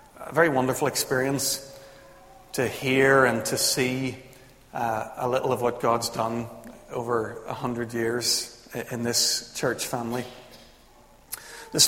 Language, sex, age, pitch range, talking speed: English, male, 40-59, 120-140 Hz, 130 wpm